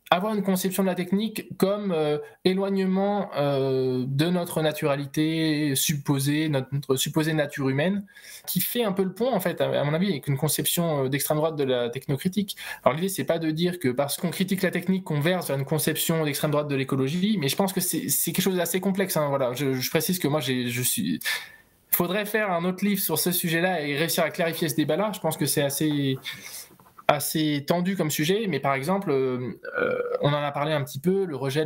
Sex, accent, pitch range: male, French, 135-175 Hz